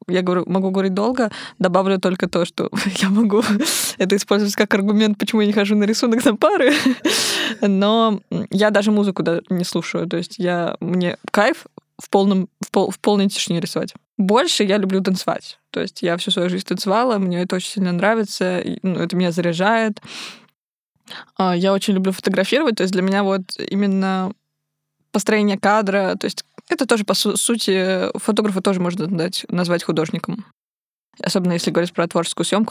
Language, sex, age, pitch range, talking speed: Russian, female, 20-39, 175-210 Hz, 165 wpm